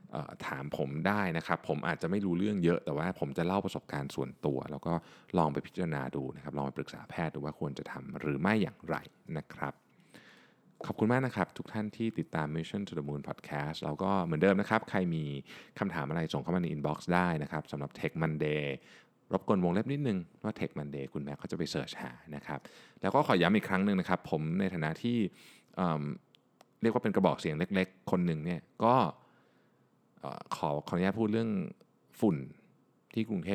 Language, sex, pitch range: Thai, male, 75-100 Hz